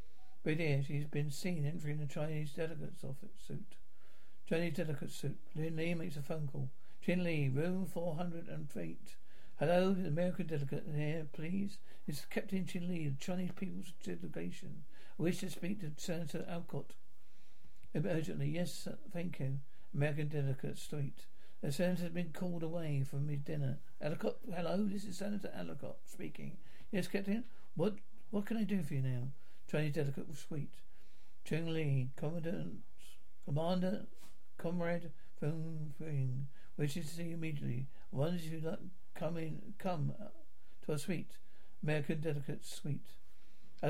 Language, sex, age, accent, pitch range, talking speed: English, male, 60-79, British, 150-185 Hz, 150 wpm